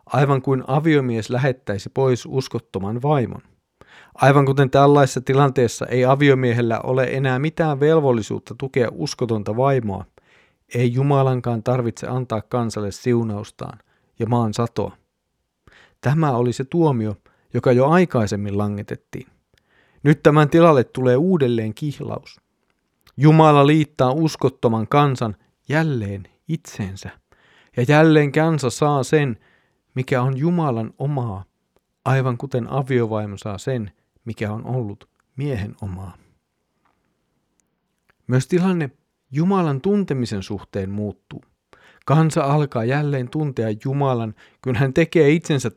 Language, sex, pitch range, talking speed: Finnish, male, 115-150 Hz, 110 wpm